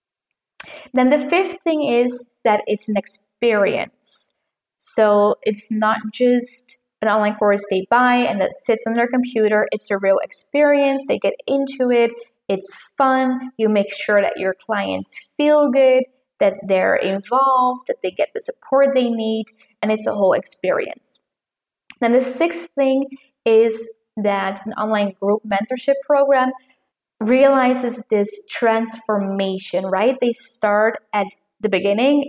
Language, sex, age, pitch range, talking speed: English, female, 20-39, 205-265 Hz, 145 wpm